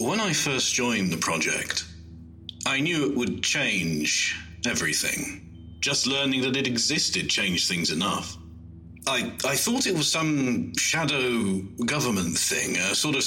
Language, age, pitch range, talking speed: English, 40-59, 85-125 Hz, 145 wpm